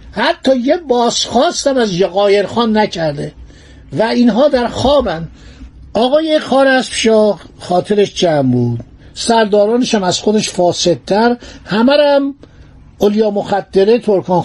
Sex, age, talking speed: male, 60-79, 100 wpm